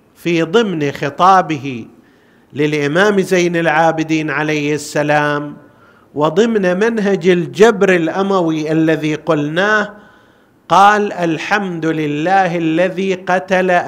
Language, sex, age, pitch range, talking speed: Arabic, male, 50-69, 155-205 Hz, 80 wpm